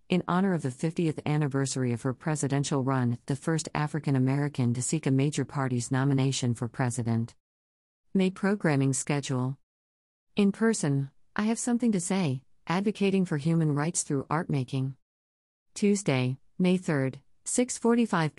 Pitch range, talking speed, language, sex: 130-160 Hz, 135 wpm, English, female